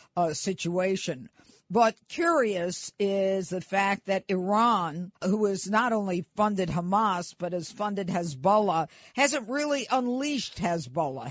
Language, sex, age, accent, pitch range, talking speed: English, female, 50-69, American, 175-220 Hz, 125 wpm